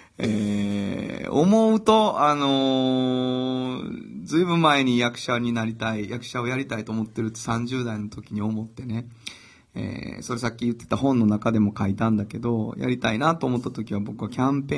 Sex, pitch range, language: male, 110-130 Hz, Japanese